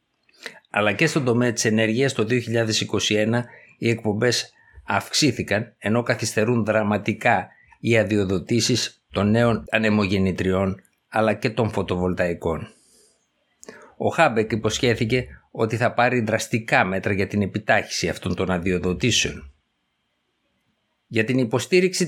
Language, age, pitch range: Greek, 60-79, 100-120 Hz